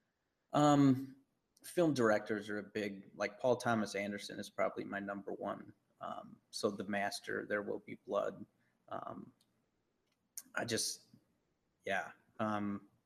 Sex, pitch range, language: male, 105-120 Hz, English